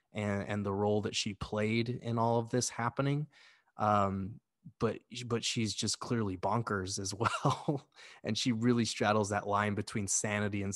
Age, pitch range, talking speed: 20-39, 100-115 Hz, 165 wpm